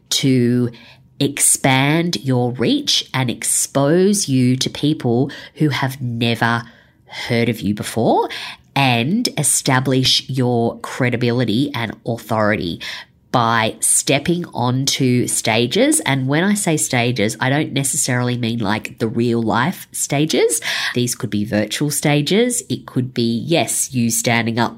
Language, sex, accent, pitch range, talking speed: English, female, Australian, 120-140 Hz, 125 wpm